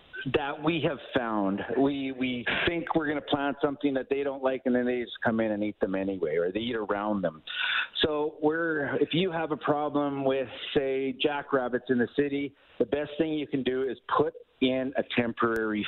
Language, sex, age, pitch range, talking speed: English, male, 50-69, 110-140 Hz, 210 wpm